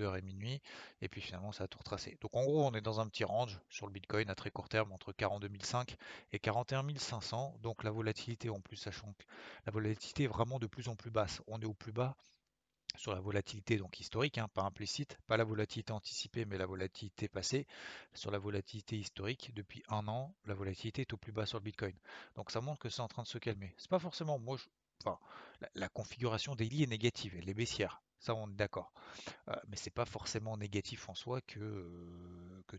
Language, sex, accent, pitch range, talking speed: French, male, French, 100-120 Hz, 220 wpm